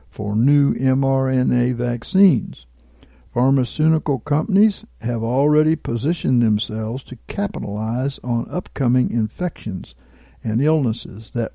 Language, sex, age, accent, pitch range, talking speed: English, male, 60-79, American, 115-160 Hz, 95 wpm